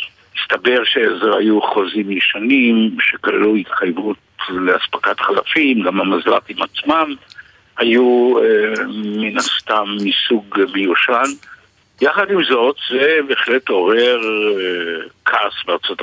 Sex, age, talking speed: male, 60-79, 100 wpm